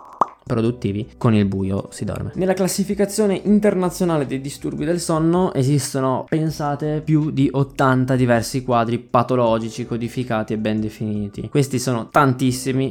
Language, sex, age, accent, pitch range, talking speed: Italian, male, 20-39, native, 110-125 Hz, 130 wpm